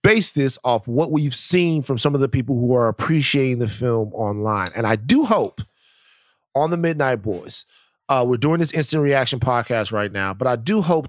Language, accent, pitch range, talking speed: English, American, 105-130 Hz, 205 wpm